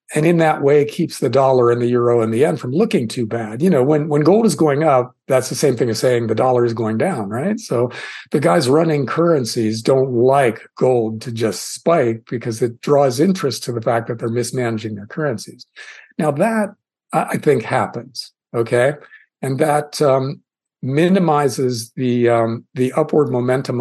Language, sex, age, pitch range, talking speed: English, male, 50-69, 120-155 Hz, 190 wpm